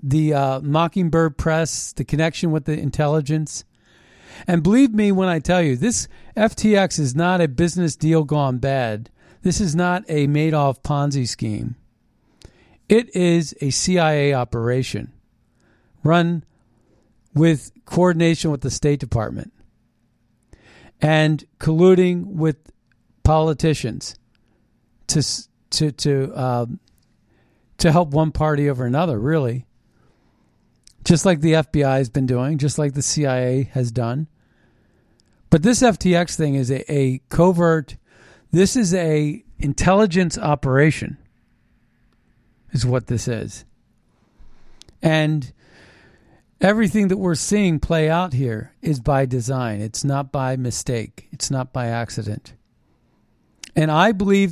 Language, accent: English, American